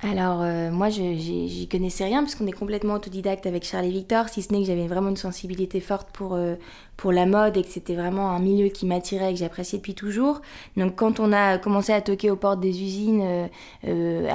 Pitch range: 185-210 Hz